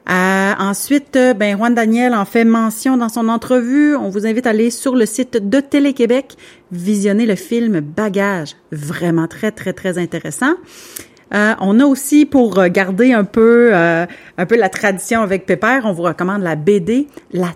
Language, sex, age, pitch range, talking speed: French, female, 40-59, 185-250 Hz, 175 wpm